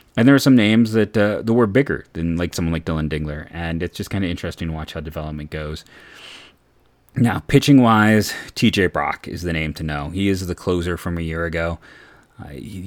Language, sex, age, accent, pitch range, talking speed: English, male, 30-49, American, 85-95 Hz, 210 wpm